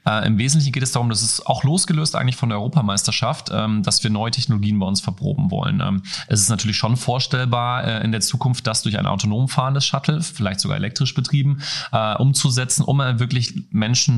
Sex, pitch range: male, 100-130 Hz